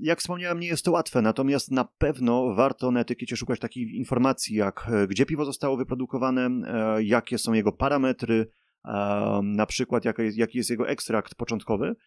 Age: 30-49